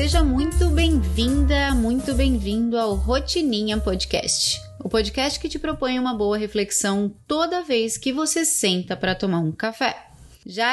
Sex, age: female, 20-39